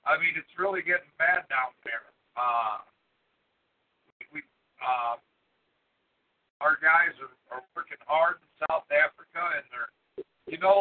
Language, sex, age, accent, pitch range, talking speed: English, male, 50-69, American, 160-205 Hz, 135 wpm